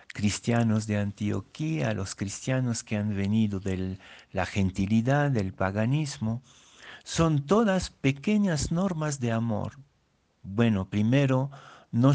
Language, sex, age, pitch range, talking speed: Spanish, male, 60-79, 105-140 Hz, 110 wpm